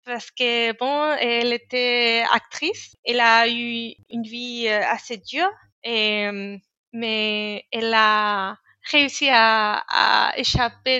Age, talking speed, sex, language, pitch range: 20-39, 110 wpm, female, French, 220-260 Hz